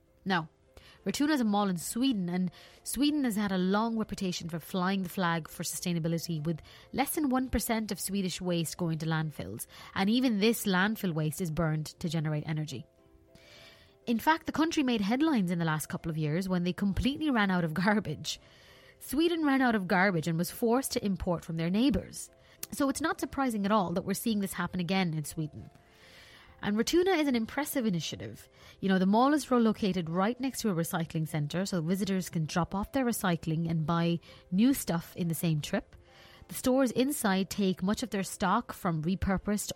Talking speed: 195 wpm